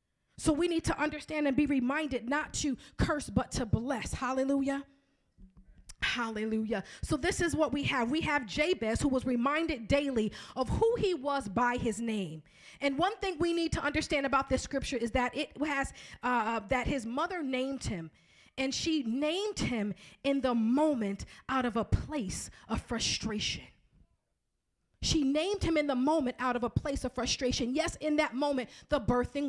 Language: English